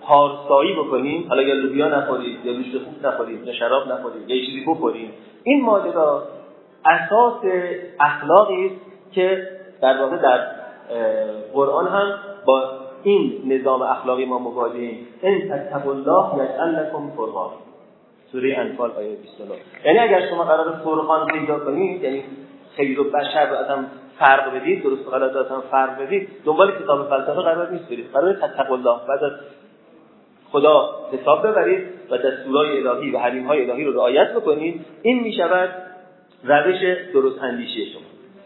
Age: 30-49